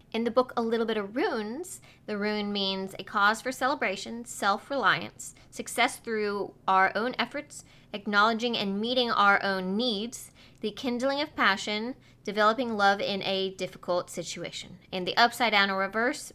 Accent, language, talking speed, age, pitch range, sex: American, English, 160 wpm, 20-39, 205-265 Hz, female